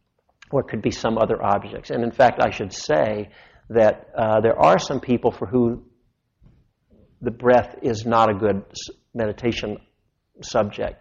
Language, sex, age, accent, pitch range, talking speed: English, male, 50-69, American, 105-115 Hz, 160 wpm